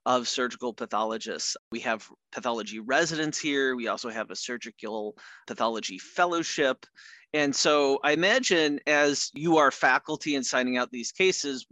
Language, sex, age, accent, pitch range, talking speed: English, male, 30-49, American, 125-150 Hz, 145 wpm